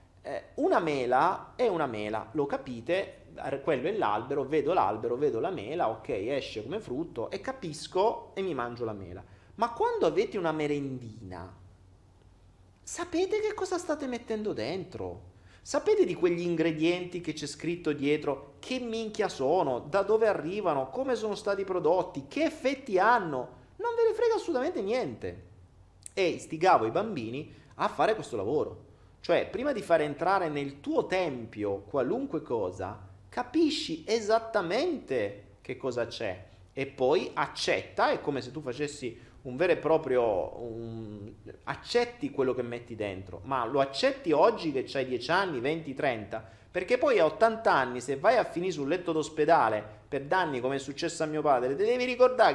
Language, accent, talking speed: Italian, native, 160 wpm